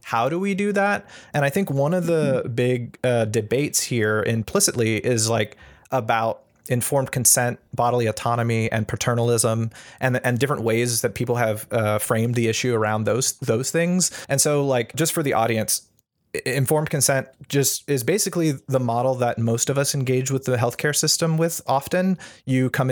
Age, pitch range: 30-49, 115-140 Hz